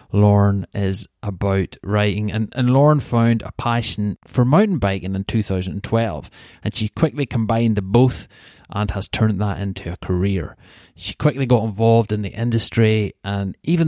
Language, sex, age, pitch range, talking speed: English, male, 30-49, 100-115 Hz, 160 wpm